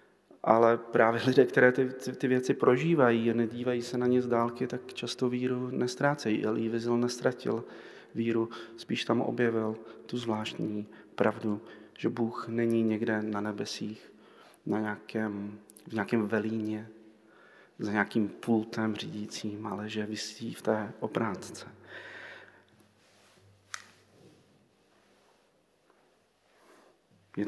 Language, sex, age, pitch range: Slovak, male, 30-49, 110-150 Hz